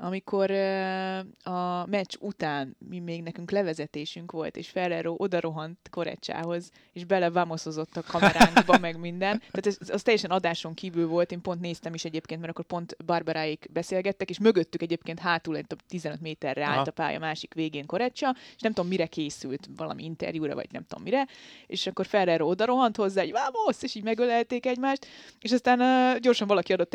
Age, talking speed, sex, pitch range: 20-39, 175 wpm, female, 155-190 Hz